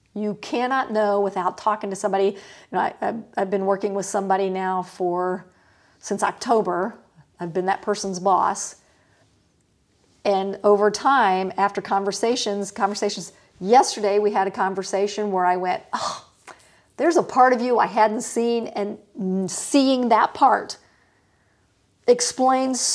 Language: English